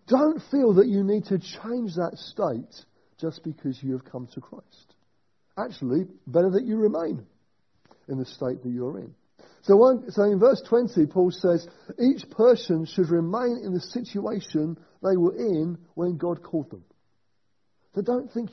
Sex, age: male, 40-59